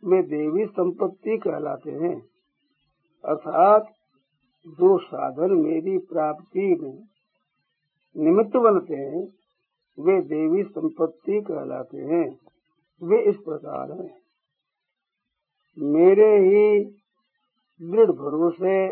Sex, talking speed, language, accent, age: male, 85 wpm, Hindi, native, 60-79